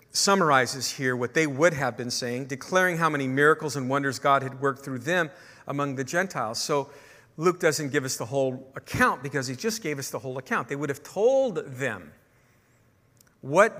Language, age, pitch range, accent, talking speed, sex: English, 50-69, 130-170 Hz, American, 190 wpm, male